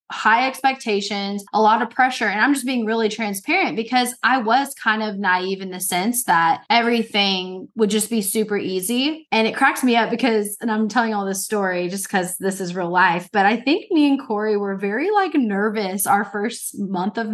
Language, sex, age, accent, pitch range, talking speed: English, female, 20-39, American, 210-275 Hz, 210 wpm